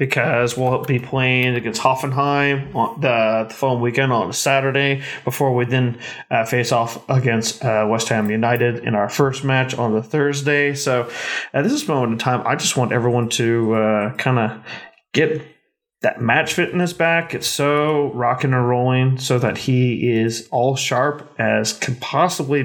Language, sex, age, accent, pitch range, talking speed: English, male, 30-49, American, 120-150 Hz, 180 wpm